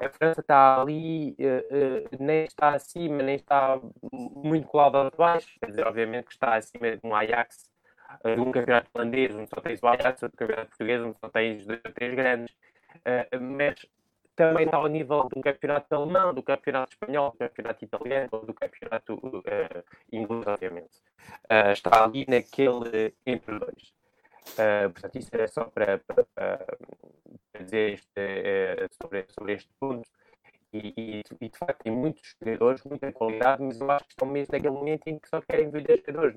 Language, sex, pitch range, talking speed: Portuguese, male, 115-155 Hz, 185 wpm